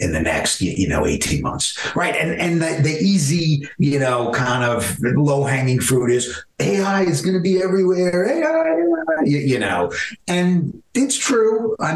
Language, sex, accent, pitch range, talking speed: English, male, American, 105-145 Hz, 160 wpm